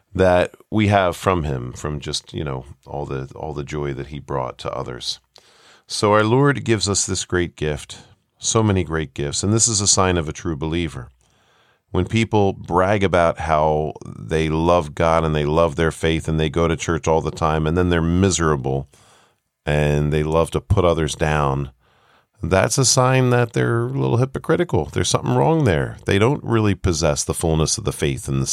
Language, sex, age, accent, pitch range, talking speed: English, male, 40-59, American, 75-95 Hz, 200 wpm